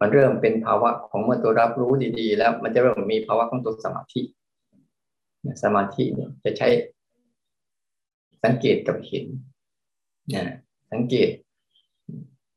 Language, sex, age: Thai, male, 20-39